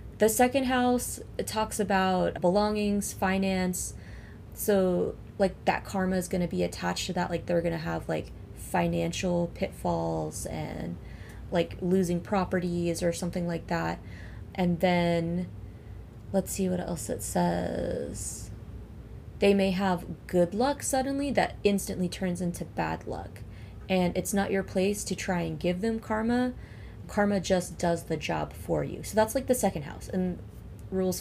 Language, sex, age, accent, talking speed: English, female, 20-39, American, 150 wpm